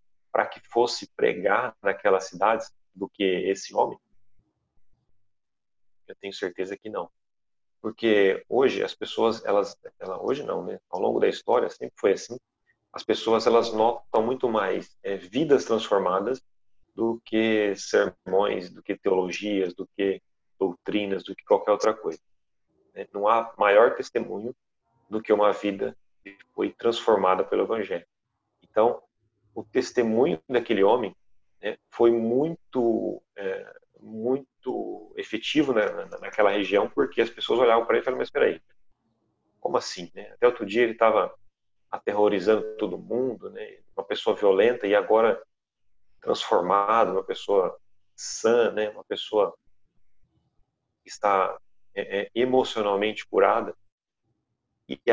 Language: Portuguese